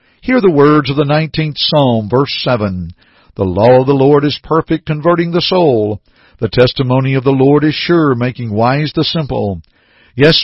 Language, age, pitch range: English, 60-79, 120-155 Hz